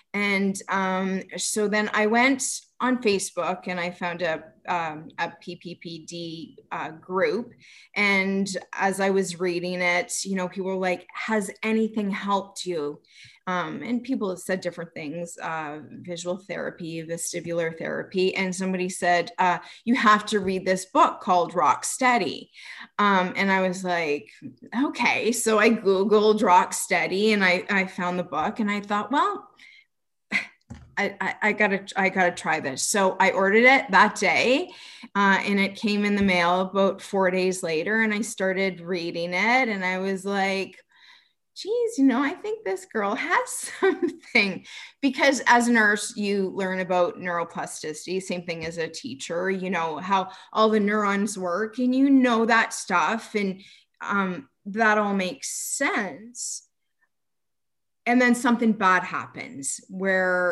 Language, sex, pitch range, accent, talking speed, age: English, female, 180-225 Hz, American, 155 wpm, 20-39